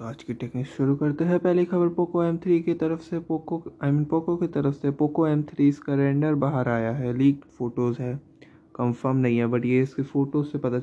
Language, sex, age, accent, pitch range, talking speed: Hindi, male, 20-39, native, 115-135 Hz, 240 wpm